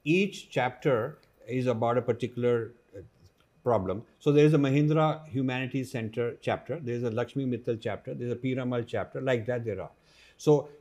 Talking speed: 170 wpm